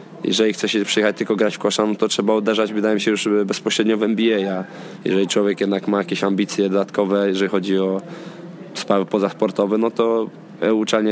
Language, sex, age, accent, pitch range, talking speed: Polish, male, 20-39, native, 100-115 Hz, 190 wpm